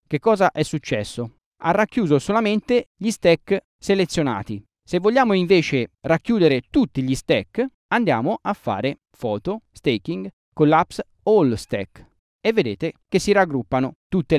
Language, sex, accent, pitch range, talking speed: Italian, male, native, 130-185 Hz, 130 wpm